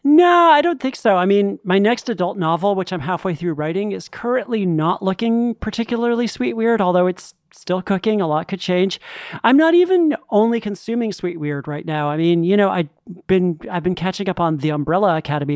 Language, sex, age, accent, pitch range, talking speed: English, male, 40-59, American, 170-235 Hz, 210 wpm